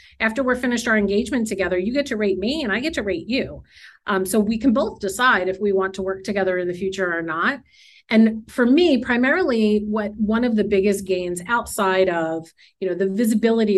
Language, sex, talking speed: English, female, 220 wpm